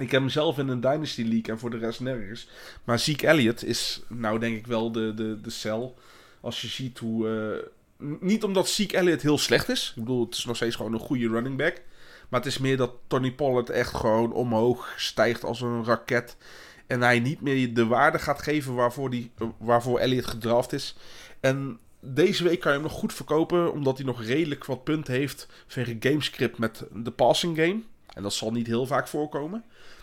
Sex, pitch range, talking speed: male, 115-135 Hz, 210 wpm